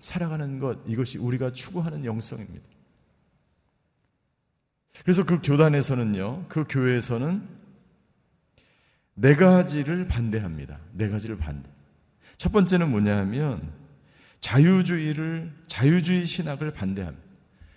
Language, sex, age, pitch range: Korean, male, 40-59, 125-165 Hz